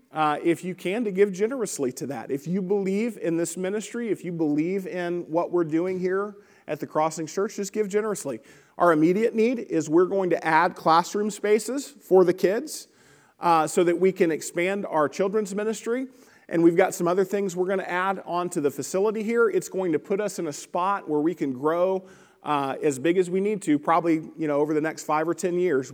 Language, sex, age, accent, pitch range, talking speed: English, male, 40-59, American, 150-195 Hz, 220 wpm